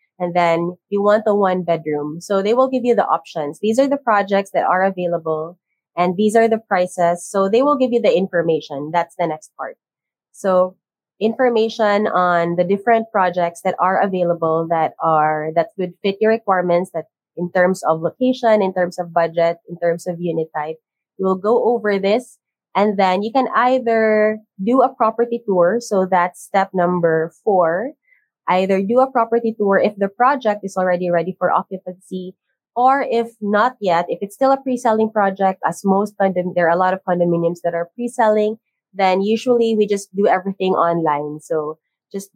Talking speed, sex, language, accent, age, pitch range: 180 wpm, female, English, Filipino, 20-39, 170-215 Hz